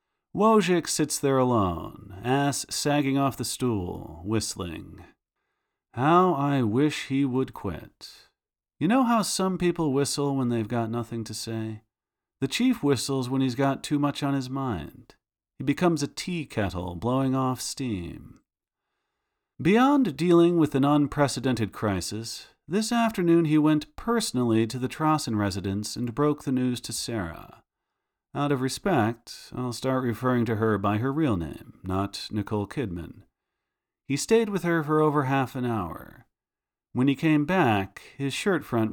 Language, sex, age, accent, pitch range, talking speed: English, male, 40-59, American, 110-155 Hz, 155 wpm